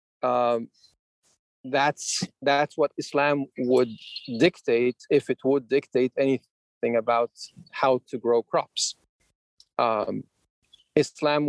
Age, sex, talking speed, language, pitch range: 40-59, male, 100 wpm, English, 130-155 Hz